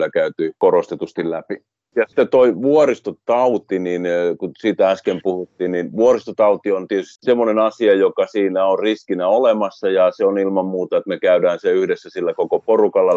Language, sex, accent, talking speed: Finnish, male, native, 165 wpm